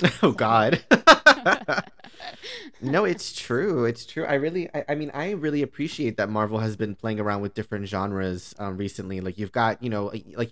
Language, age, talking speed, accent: English, 20-39, 185 wpm, American